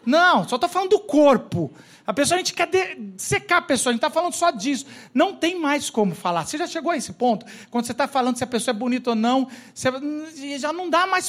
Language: Portuguese